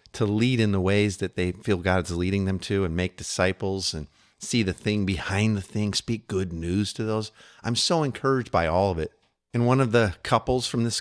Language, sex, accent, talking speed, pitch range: English, male, American, 225 wpm, 90-120 Hz